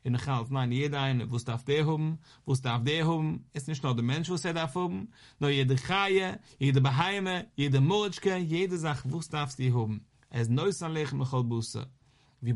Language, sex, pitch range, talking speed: English, male, 130-160 Hz, 155 wpm